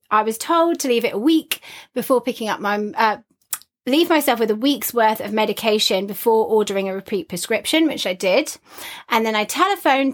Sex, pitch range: female, 210-290 Hz